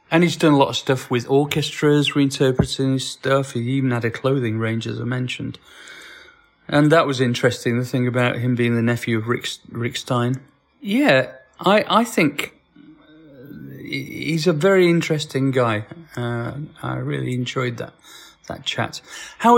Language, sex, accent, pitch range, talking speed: English, male, British, 125-160 Hz, 160 wpm